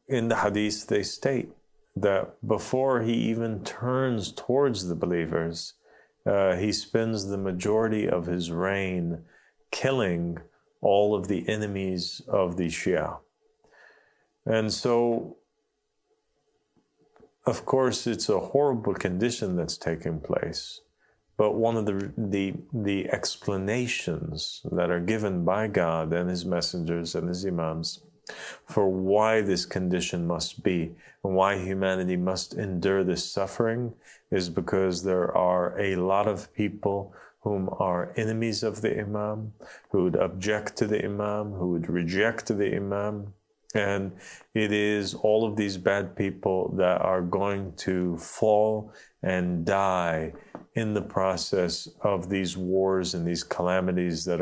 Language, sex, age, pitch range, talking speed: English, male, 40-59, 90-110 Hz, 135 wpm